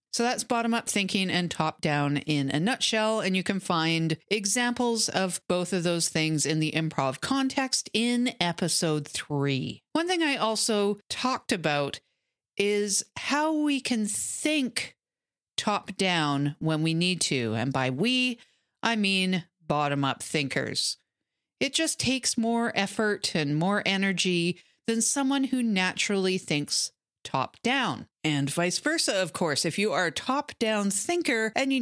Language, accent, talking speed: English, American, 145 wpm